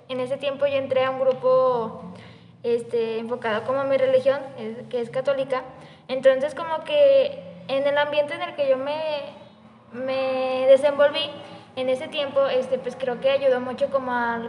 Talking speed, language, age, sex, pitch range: 170 wpm, Spanish, 10-29, female, 245-280 Hz